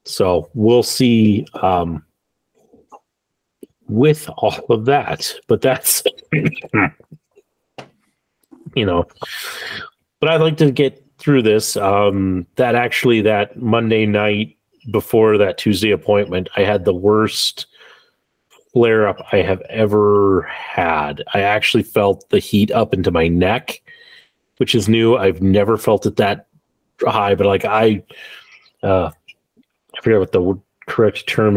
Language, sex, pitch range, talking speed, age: English, male, 95-145 Hz, 125 wpm, 30-49